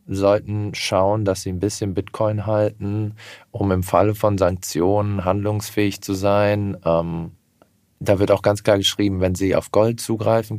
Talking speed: 160 wpm